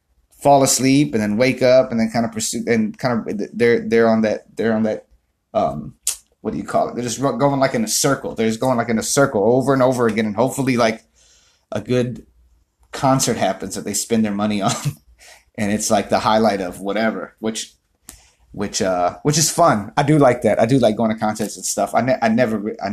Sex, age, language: male, 30-49, English